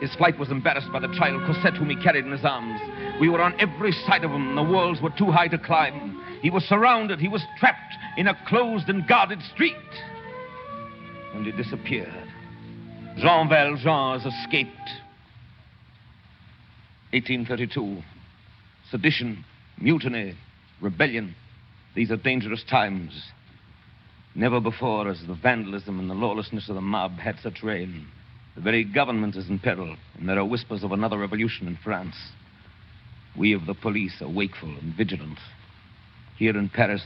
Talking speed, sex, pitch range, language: 155 wpm, male, 95-130 Hz, English